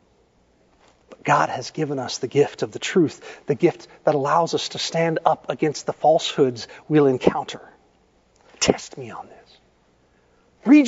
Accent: American